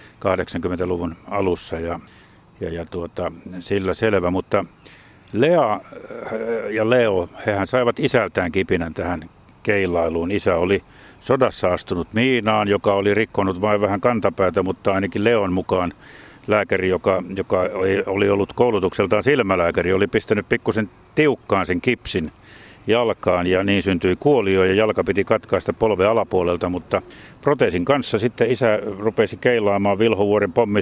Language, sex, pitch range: Finnish, male, 95-110 Hz